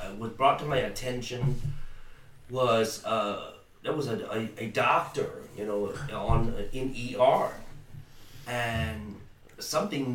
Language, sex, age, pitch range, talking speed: English, male, 30-49, 110-140 Hz, 125 wpm